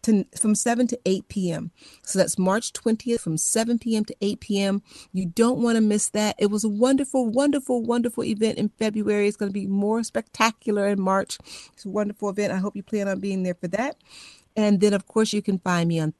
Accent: American